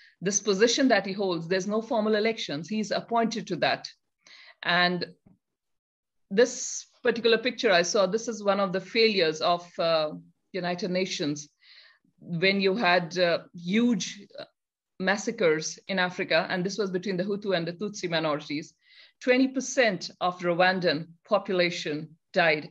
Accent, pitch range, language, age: Indian, 170-210 Hz, English, 50-69